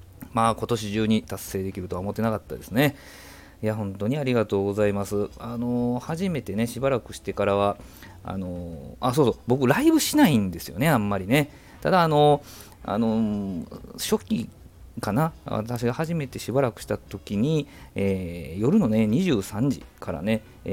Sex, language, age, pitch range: male, Japanese, 40-59, 95-120 Hz